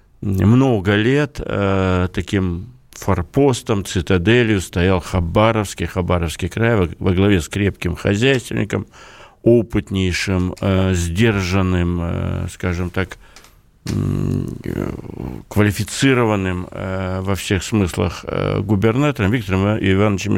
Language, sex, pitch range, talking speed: Russian, male, 95-115 Hz, 95 wpm